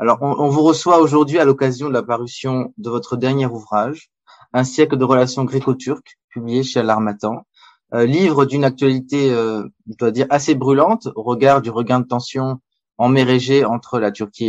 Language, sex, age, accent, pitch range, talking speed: French, male, 20-39, French, 120-140 Hz, 180 wpm